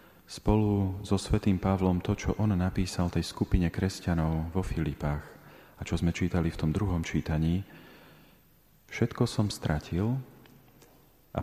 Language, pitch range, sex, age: Slovak, 85-95 Hz, male, 40-59